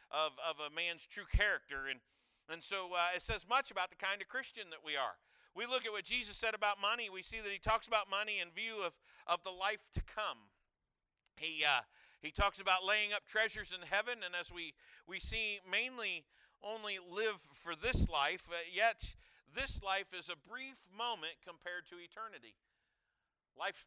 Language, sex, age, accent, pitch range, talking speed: English, male, 50-69, American, 170-215 Hz, 190 wpm